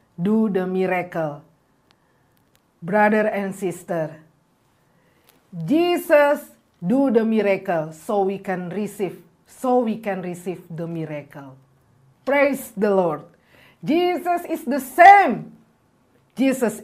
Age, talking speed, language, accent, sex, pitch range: 40-59, 100 wpm, English, Indonesian, female, 165-225 Hz